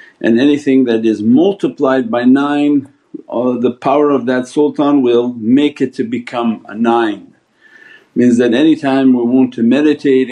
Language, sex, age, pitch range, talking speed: English, male, 50-69, 115-145 Hz, 155 wpm